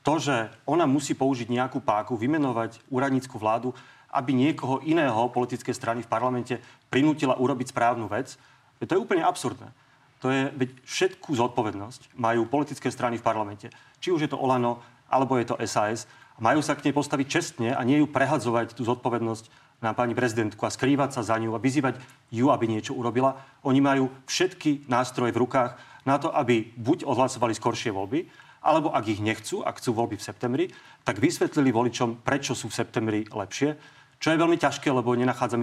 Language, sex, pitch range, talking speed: Slovak, male, 115-140 Hz, 180 wpm